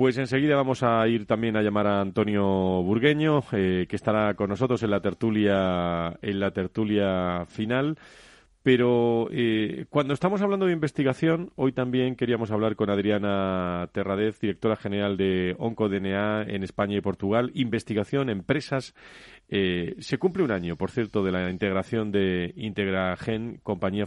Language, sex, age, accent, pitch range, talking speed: Spanish, male, 40-59, Spanish, 95-120 Hz, 150 wpm